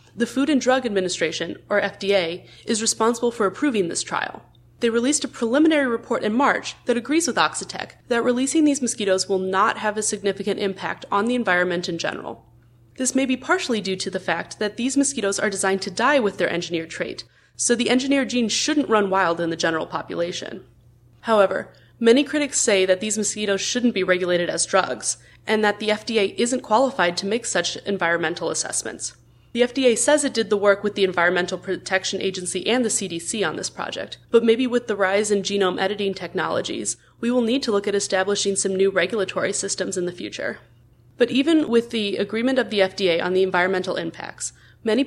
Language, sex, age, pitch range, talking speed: English, female, 20-39, 180-235 Hz, 195 wpm